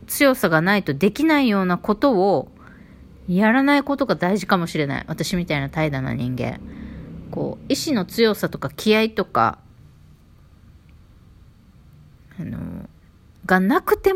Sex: female